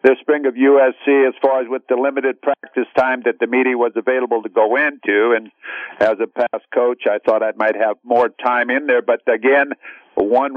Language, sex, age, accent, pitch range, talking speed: English, male, 60-79, American, 130-150 Hz, 210 wpm